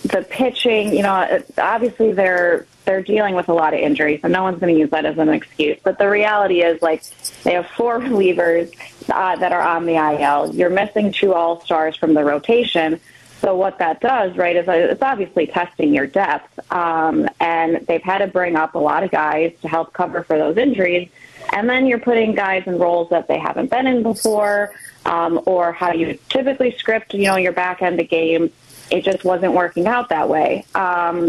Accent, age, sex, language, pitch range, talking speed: American, 20-39, female, English, 170-205 Hz, 205 wpm